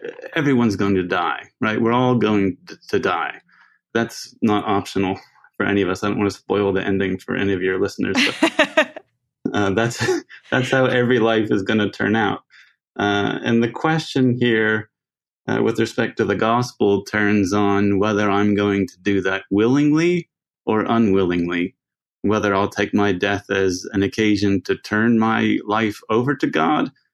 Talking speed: 175 wpm